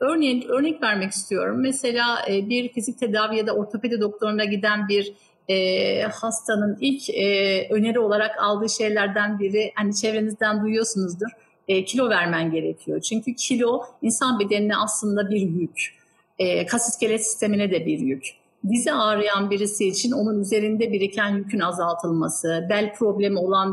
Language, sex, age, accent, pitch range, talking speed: Turkish, female, 50-69, native, 195-225 Hz, 140 wpm